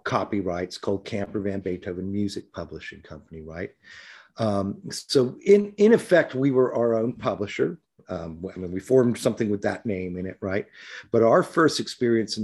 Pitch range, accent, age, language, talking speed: 95-120 Hz, American, 50-69, English, 175 wpm